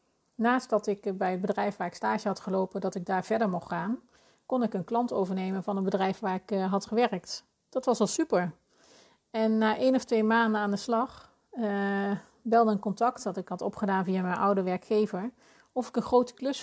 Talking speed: 215 wpm